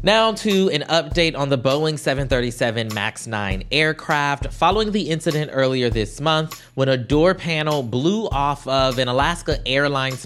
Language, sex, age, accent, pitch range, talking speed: English, male, 20-39, American, 115-145 Hz, 160 wpm